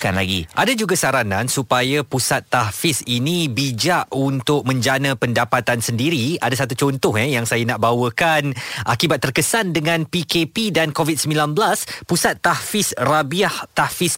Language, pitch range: Malay, 125-170 Hz